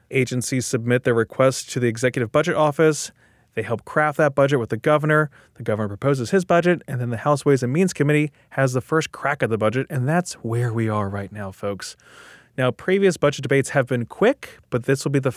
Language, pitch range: English, 120-155 Hz